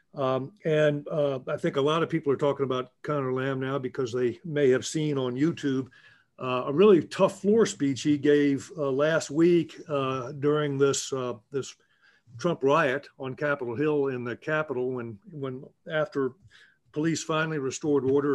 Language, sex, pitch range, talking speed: English, male, 130-160 Hz, 175 wpm